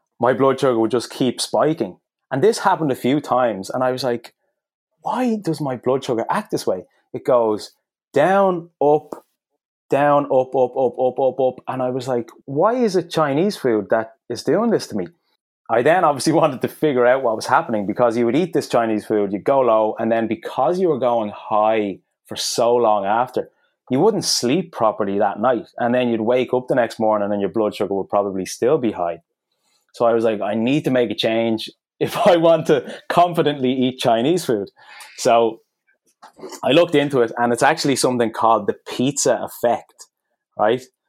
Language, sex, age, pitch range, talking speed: English, male, 20-39, 110-135 Hz, 200 wpm